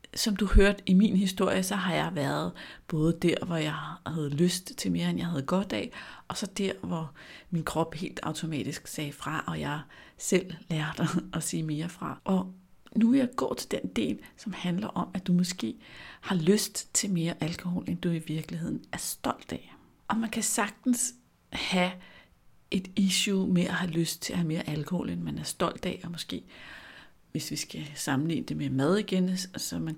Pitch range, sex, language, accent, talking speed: 150-195 Hz, female, Danish, native, 200 wpm